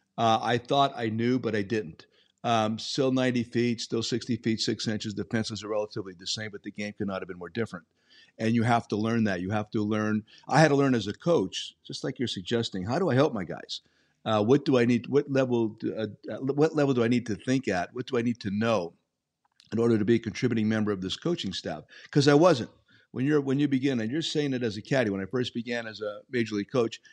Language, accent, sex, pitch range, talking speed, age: English, American, male, 105-125 Hz, 255 wpm, 50-69